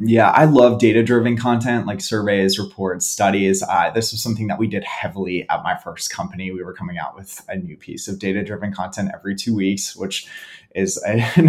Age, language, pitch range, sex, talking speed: 20-39, English, 100-125 Hz, male, 200 wpm